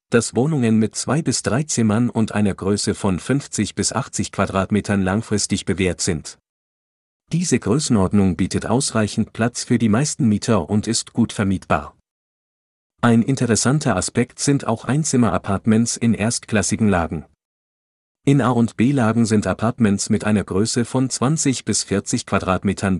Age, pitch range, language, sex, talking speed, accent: 40-59, 100-125 Hz, German, male, 140 wpm, German